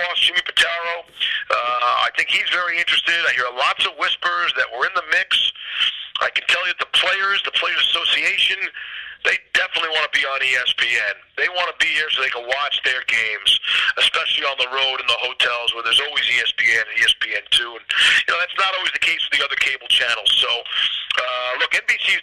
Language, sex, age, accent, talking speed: English, male, 40-59, American, 205 wpm